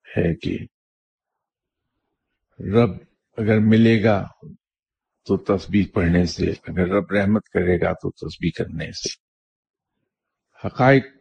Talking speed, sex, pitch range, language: 95 wpm, male, 90-110 Hz, English